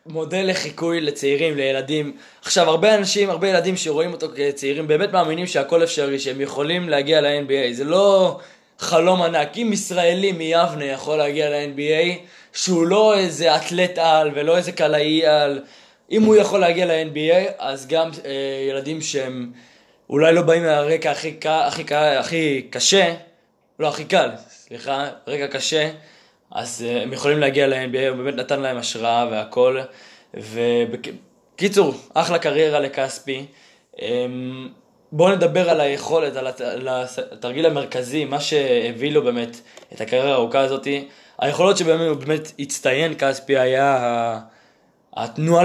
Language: Hebrew